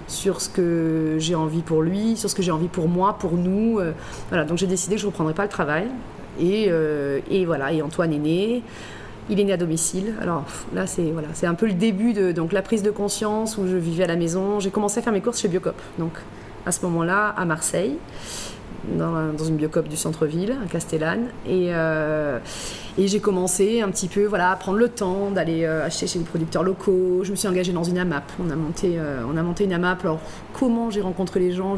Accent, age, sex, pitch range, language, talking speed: French, 30-49, female, 165-195 Hz, French, 235 wpm